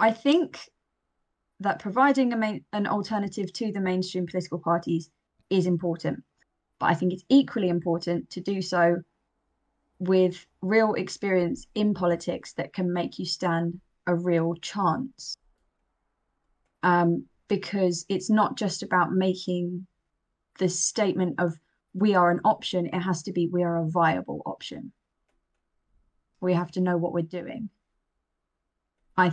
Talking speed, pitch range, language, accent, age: 135 wpm, 170-200 Hz, English, British, 20-39